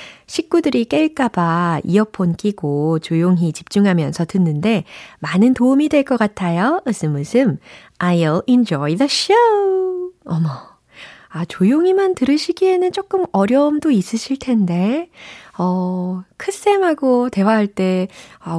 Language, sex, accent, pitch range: Korean, female, native, 170-260 Hz